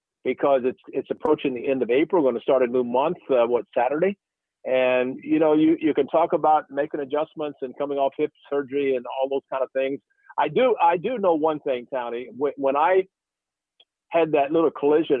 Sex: male